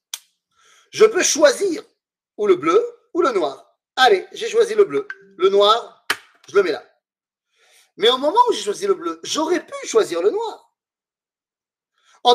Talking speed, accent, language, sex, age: 165 wpm, French, French, male, 40-59